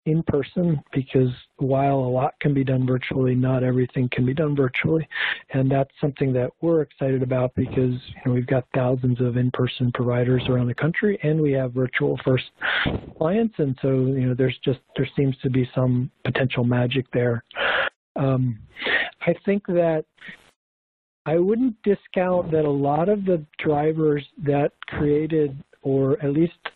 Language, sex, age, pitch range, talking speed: English, male, 50-69, 130-160 Hz, 165 wpm